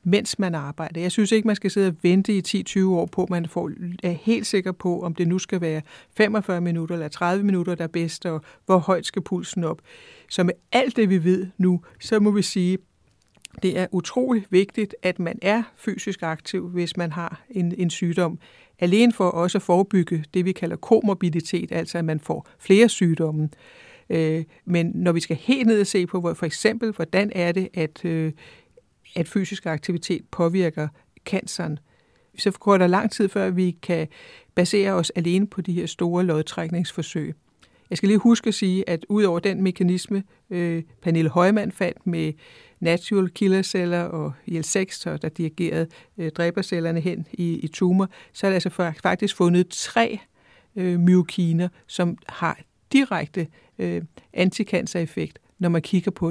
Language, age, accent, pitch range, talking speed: Danish, 60-79, native, 170-195 Hz, 175 wpm